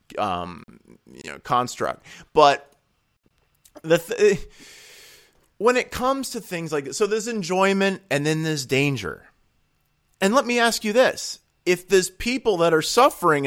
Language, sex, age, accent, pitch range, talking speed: English, male, 30-49, American, 110-160 Hz, 145 wpm